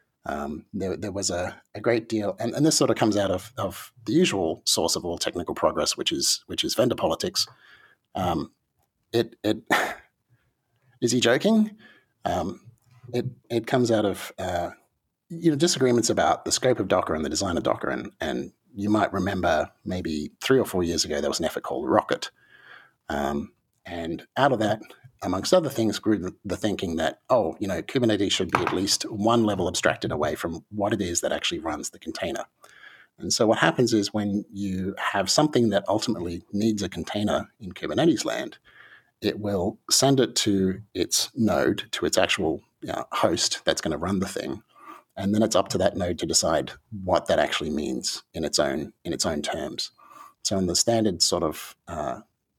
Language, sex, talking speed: English, male, 195 wpm